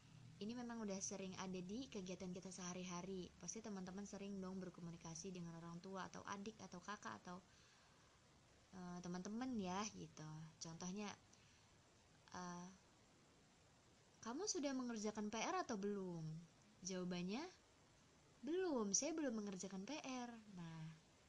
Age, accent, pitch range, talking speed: 20-39, native, 180-250 Hz, 115 wpm